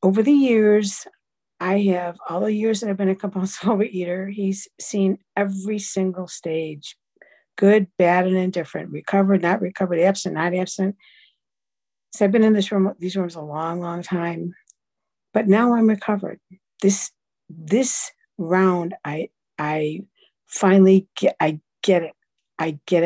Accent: American